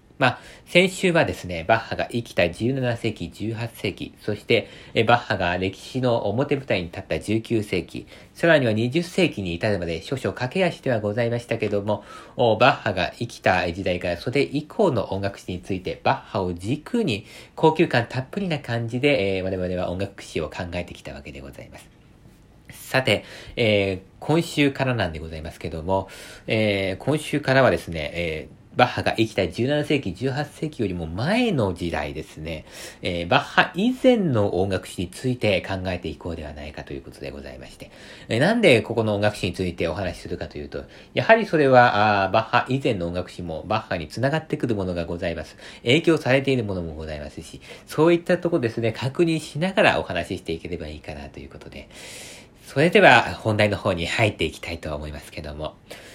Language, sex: Japanese, male